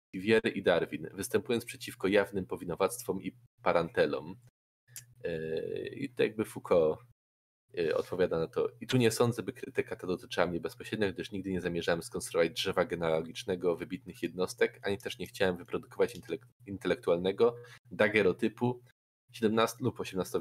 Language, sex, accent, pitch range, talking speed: Polish, male, native, 90-125 Hz, 135 wpm